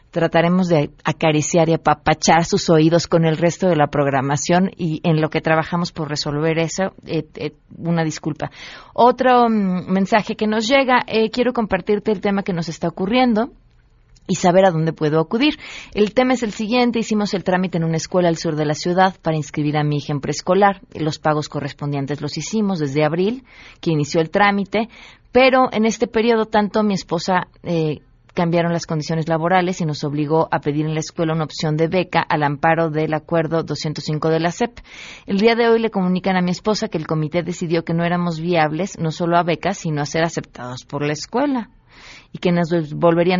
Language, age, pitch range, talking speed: Spanish, 30-49, 160-200 Hz, 200 wpm